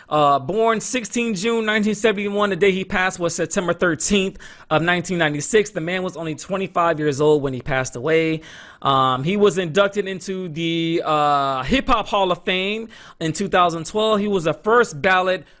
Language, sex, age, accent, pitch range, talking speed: English, male, 30-49, American, 155-210 Hz, 170 wpm